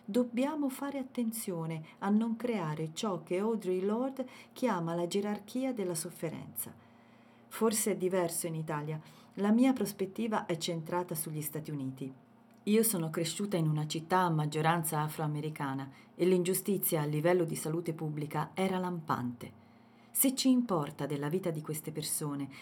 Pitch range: 150-210 Hz